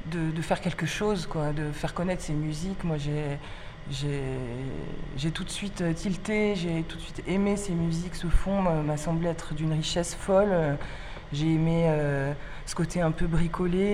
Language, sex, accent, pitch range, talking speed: French, female, French, 155-185 Hz, 180 wpm